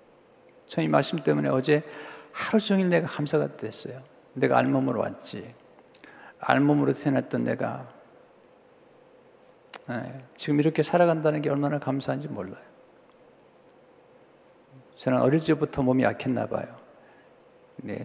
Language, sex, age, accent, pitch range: Korean, male, 50-69, native, 130-170 Hz